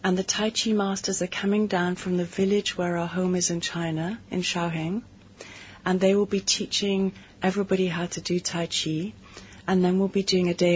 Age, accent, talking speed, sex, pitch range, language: 40-59, British, 205 wpm, female, 170-195 Hz, English